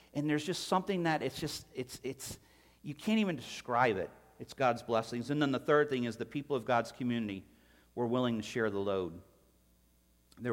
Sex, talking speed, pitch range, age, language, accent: male, 200 wpm, 105-150 Hz, 40-59, English, American